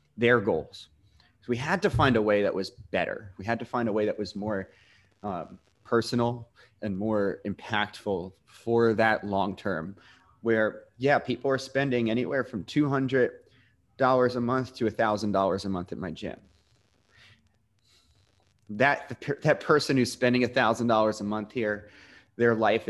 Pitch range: 100-120 Hz